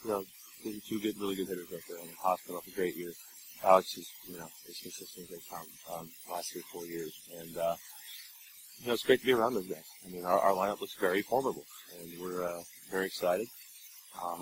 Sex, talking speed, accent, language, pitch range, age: male, 250 wpm, American, English, 85-95 Hz, 30-49